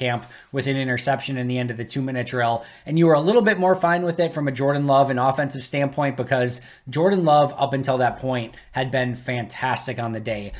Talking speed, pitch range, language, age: 230 wpm, 130-155 Hz, English, 20-39